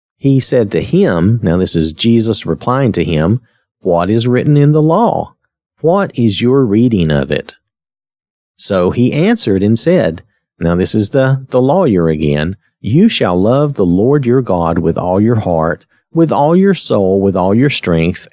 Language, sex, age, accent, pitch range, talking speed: English, male, 40-59, American, 95-140 Hz, 175 wpm